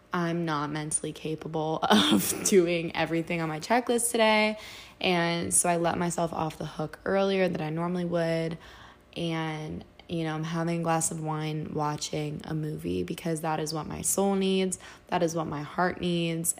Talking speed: 175 wpm